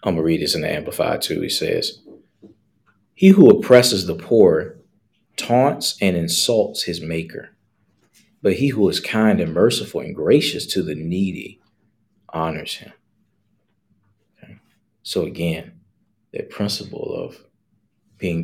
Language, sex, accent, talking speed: English, male, American, 135 wpm